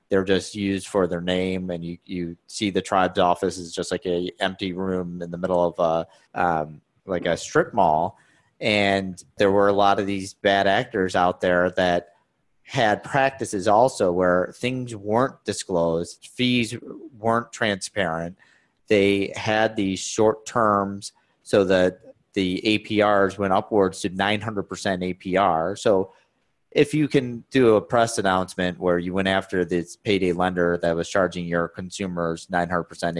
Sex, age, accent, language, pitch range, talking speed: male, 30-49, American, English, 90-105 Hz, 160 wpm